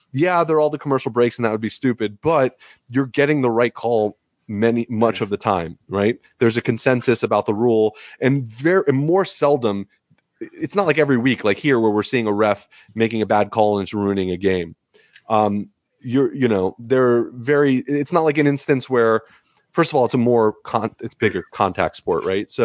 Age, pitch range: 30-49, 100-125 Hz